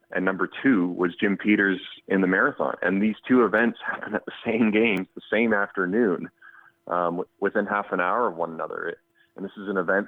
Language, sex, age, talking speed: English, male, 30-49, 200 wpm